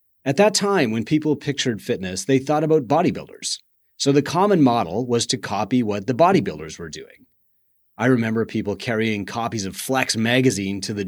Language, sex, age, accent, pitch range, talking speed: English, male, 30-49, American, 105-150 Hz, 180 wpm